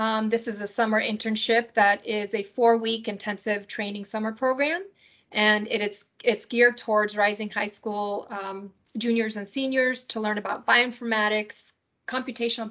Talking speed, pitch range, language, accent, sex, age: 150 wpm, 215-240 Hz, English, American, female, 30-49